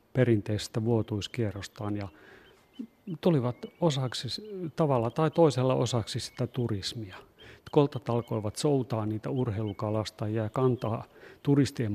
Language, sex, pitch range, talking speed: Finnish, male, 110-140 Hz, 95 wpm